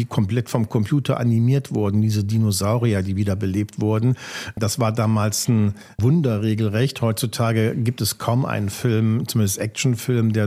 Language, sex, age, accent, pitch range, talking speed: German, male, 50-69, German, 110-130 Hz, 145 wpm